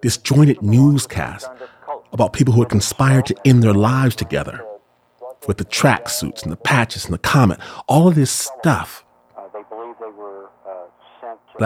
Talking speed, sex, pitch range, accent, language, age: 140 wpm, male, 105-150 Hz, American, English, 40-59